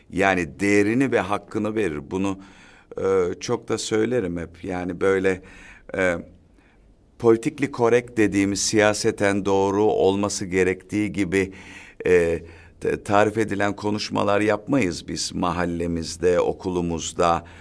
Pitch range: 90-110 Hz